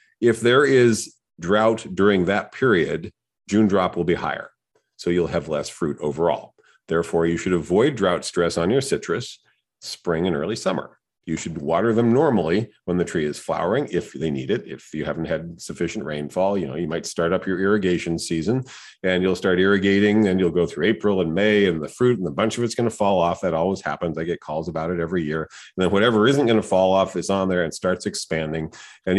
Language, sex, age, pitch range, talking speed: English, male, 40-59, 85-110 Hz, 220 wpm